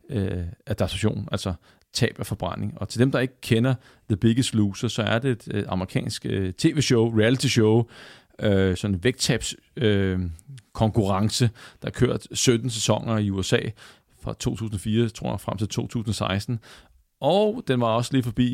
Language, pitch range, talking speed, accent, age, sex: Danish, 95-120 Hz, 140 wpm, native, 40-59, male